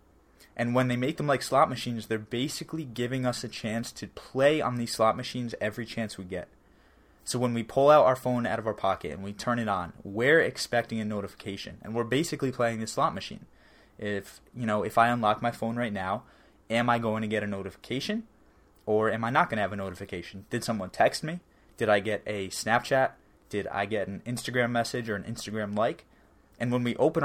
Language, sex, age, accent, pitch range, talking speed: English, male, 20-39, American, 105-120 Hz, 220 wpm